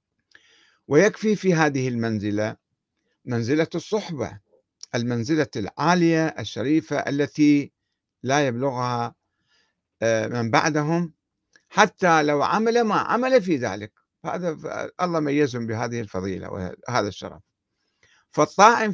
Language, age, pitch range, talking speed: Arabic, 50-69, 110-160 Hz, 90 wpm